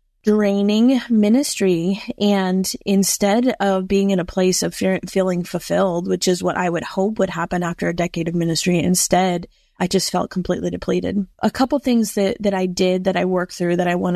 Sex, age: female, 20-39